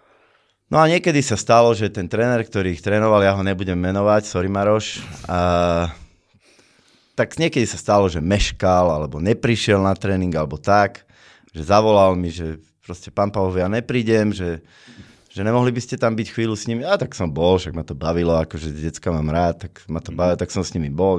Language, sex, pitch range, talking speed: Slovak, male, 85-105 Hz, 200 wpm